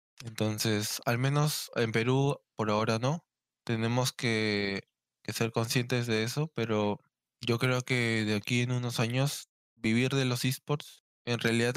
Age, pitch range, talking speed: 20-39, 115-135 Hz, 155 wpm